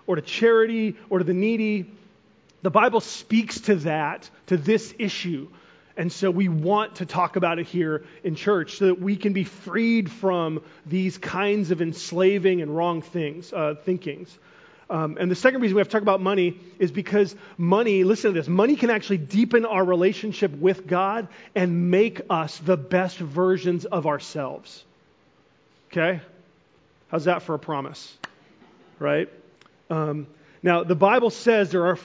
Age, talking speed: 30-49, 170 wpm